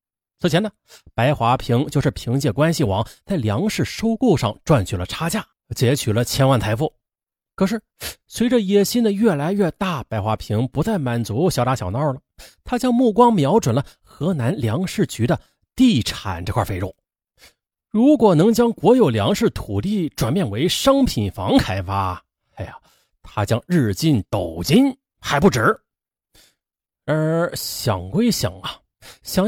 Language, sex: Chinese, male